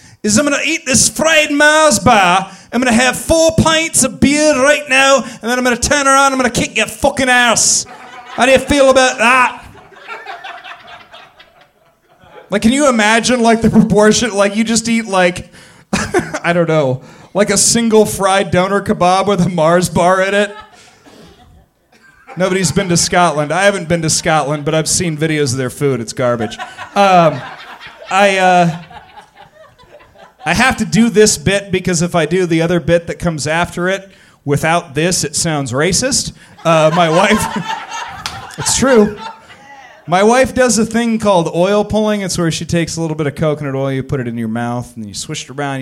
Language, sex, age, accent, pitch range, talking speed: English, male, 30-49, American, 150-230 Hz, 185 wpm